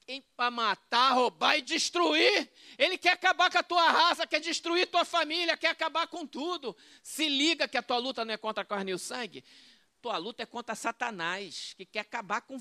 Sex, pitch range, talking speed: male, 240-335 Hz, 205 wpm